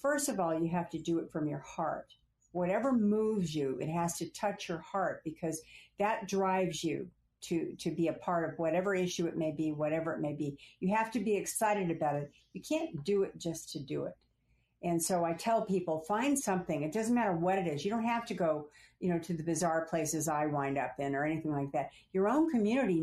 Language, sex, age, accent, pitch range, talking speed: English, female, 60-79, American, 155-205 Hz, 230 wpm